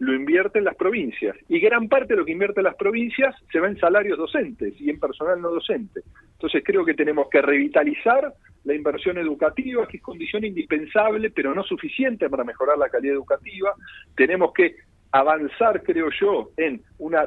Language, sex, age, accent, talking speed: Italian, male, 50-69, Argentinian, 185 wpm